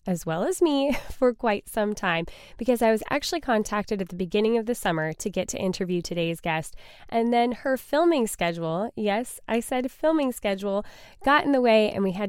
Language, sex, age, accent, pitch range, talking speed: English, female, 10-29, American, 200-265 Hz, 205 wpm